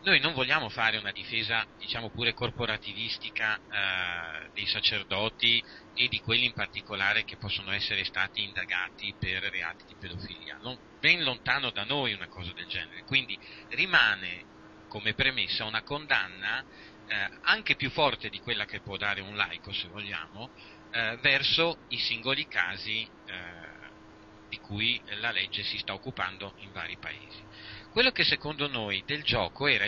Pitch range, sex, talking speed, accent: 100-120 Hz, male, 155 wpm, native